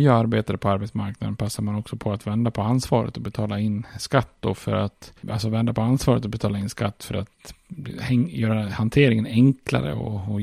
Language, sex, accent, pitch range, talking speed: Swedish, male, Norwegian, 105-120 Hz, 195 wpm